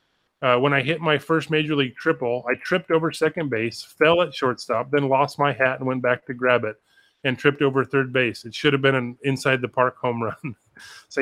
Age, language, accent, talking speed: 30-49, English, American, 220 wpm